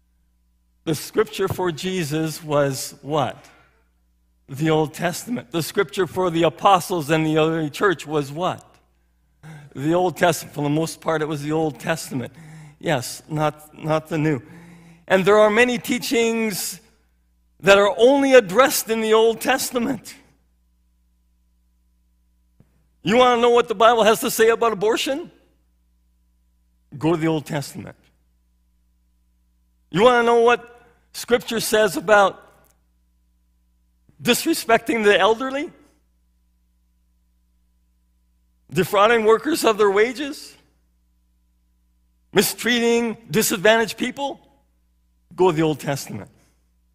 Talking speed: 115 wpm